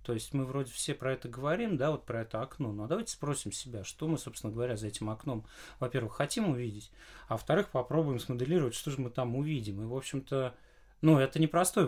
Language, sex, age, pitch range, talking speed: Russian, male, 30-49, 115-160 Hz, 210 wpm